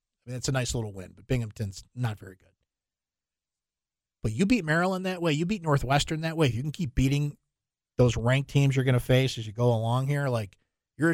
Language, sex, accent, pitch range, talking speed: English, male, American, 110-150 Hz, 225 wpm